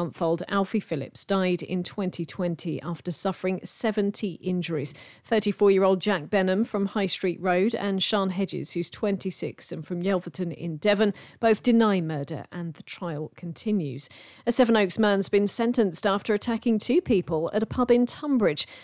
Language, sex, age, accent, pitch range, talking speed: English, female, 40-59, British, 180-215 Hz, 155 wpm